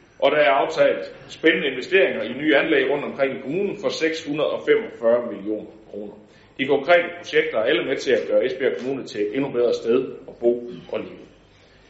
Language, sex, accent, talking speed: Danish, male, native, 185 wpm